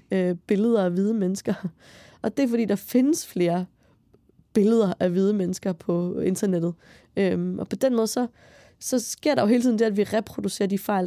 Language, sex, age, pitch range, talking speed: Danish, female, 20-39, 185-220 Hz, 190 wpm